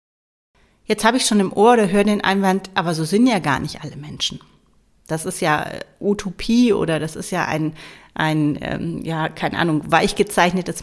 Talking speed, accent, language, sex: 185 wpm, German, German, female